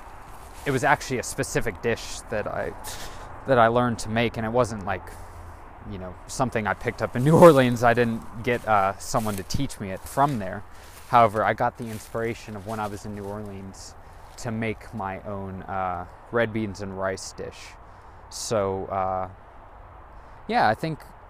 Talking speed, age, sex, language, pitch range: 185 wpm, 20-39, male, English, 95-115 Hz